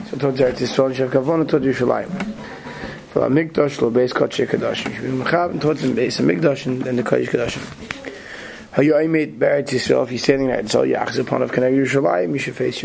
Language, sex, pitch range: English, male, 130-155 Hz